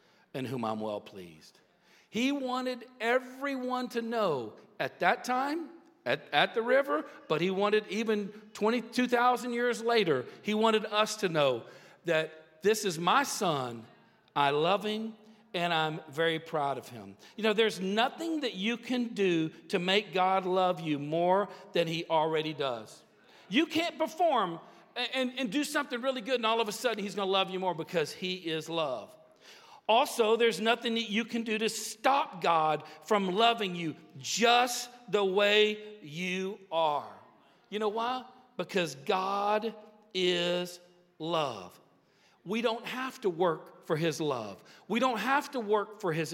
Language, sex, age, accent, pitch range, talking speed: English, male, 50-69, American, 175-245 Hz, 165 wpm